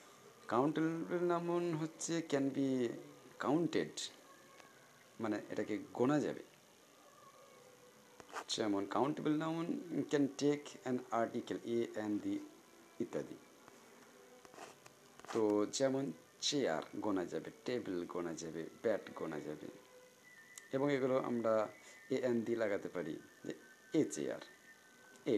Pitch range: 115-150 Hz